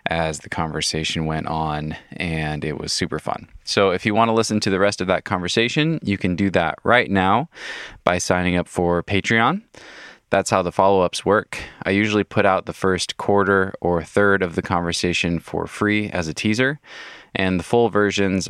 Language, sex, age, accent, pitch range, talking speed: English, male, 20-39, American, 80-100 Hz, 190 wpm